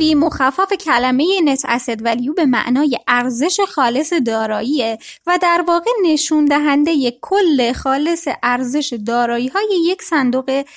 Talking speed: 105 wpm